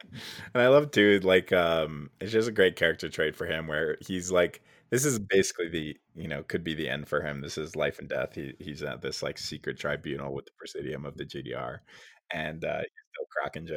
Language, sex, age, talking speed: English, male, 20-39, 235 wpm